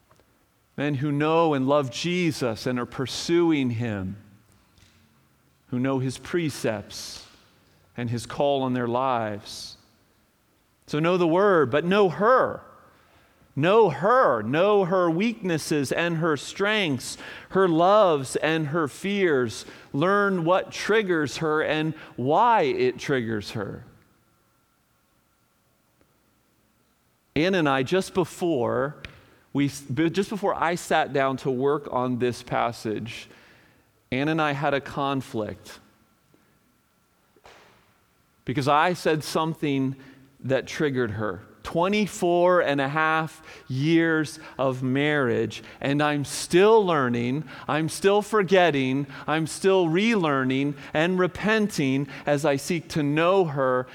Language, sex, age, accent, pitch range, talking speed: English, male, 40-59, American, 125-165 Hz, 115 wpm